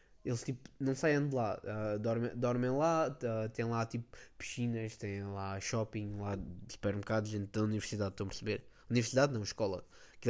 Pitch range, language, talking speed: 120-150 Hz, Portuguese, 175 wpm